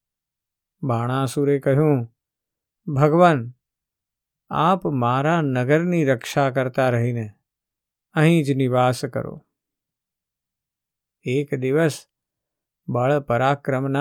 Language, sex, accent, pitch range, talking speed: Gujarati, male, native, 120-150 Hz, 70 wpm